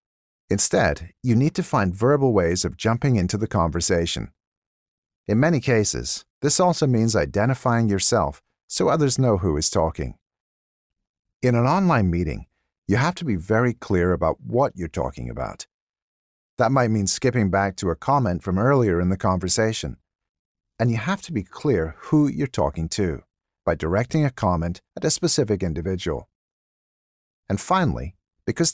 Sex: male